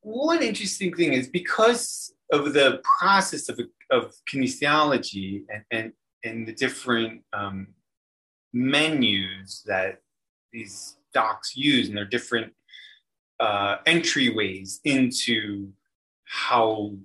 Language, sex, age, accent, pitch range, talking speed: English, male, 30-49, American, 105-160 Hz, 100 wpm